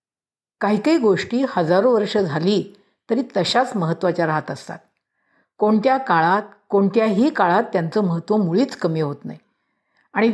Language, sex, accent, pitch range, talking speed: Marathi, female, native, 175-235 Hz, 130 wpm